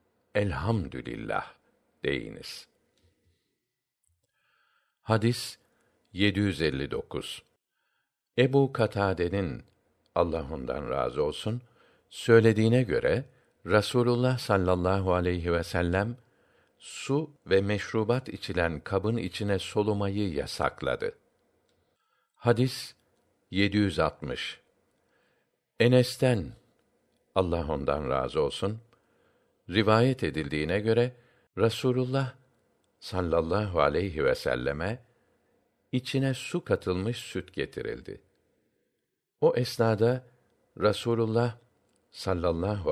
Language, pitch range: Turkish, 100-125 Hz